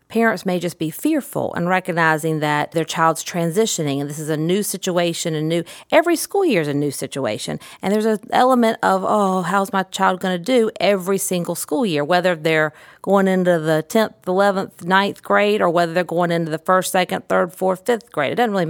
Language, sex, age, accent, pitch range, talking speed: English, female, 40-59, American, 160-195 Hz, 210 wpm